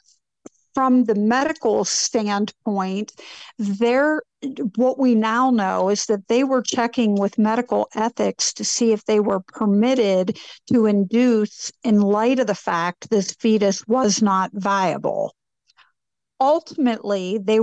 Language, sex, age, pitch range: English, female, 50-69, 205-240 Hz